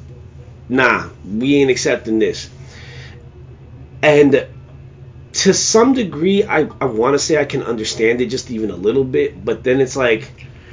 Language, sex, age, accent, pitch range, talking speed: English, male, 30-49, American, 110-170 Hz, 150 wpm